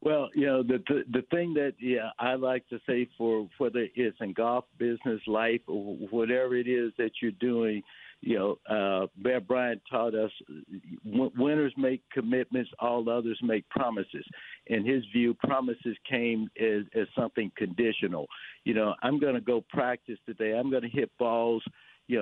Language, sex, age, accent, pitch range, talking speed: English, male, 60-79, American, 115-140 Hz, 175 wpm